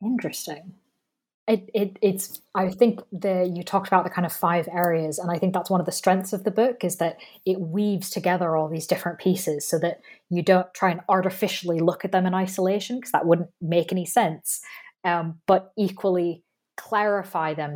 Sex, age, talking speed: female, 20-39, 195 wpm